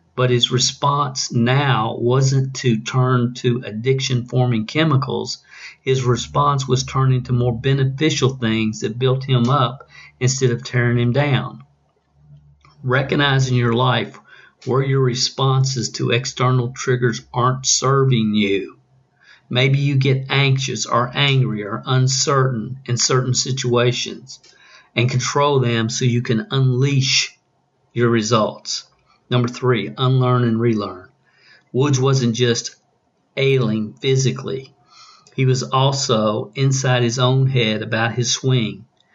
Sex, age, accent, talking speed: male, 50-69, American, 125 wpm